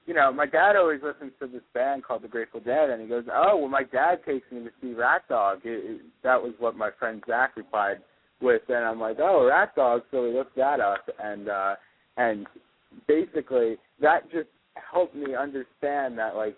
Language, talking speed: English, 210 wpm